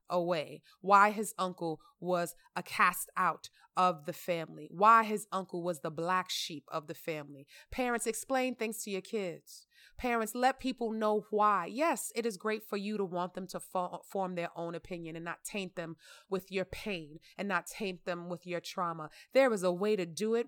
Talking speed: 195 wpm